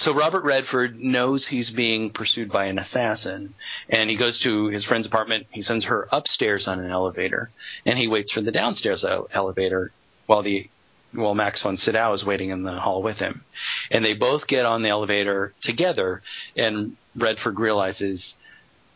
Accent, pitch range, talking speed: American, 100-125 Hz, 175 wpm